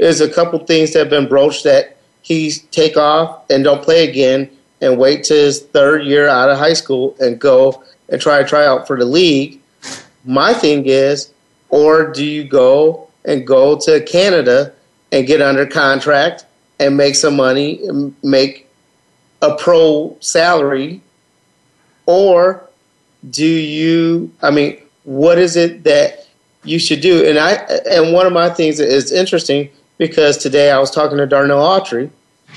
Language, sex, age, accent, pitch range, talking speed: English, male, 40-59, American, 140-170 Hz, 170 wpm